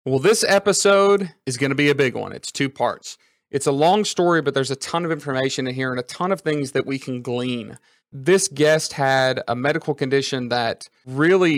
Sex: male